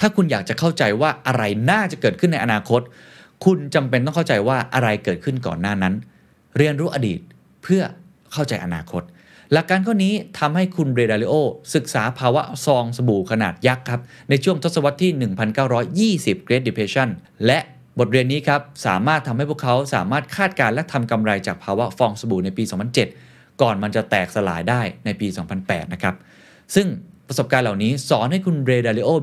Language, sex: Thai, male